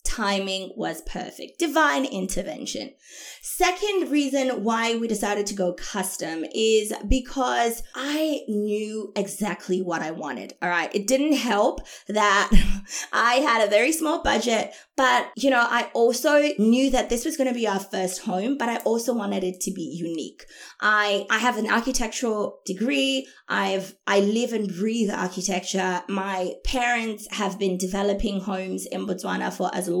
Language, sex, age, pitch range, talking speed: English, female, 20-39, 190-250 Hz, 160 wpm